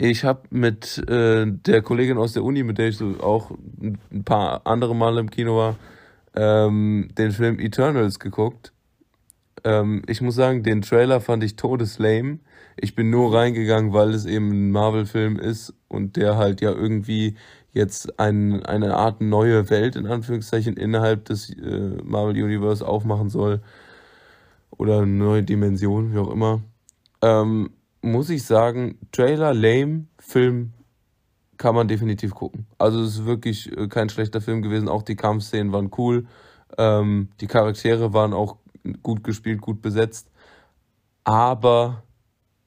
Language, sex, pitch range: German, male, 105-115 Hz